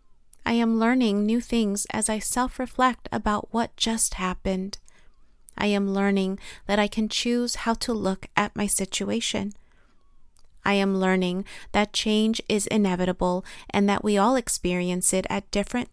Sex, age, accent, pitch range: female, 30-49, American, 190-230 Hz